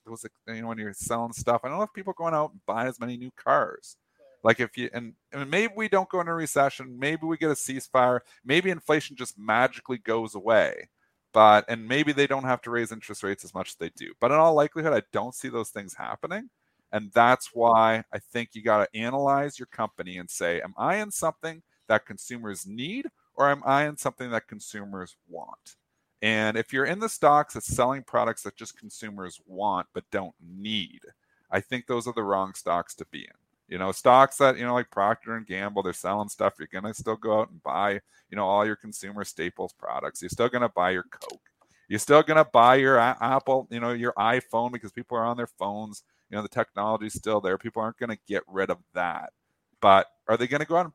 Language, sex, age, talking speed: English, male, 40-59, 230 wpm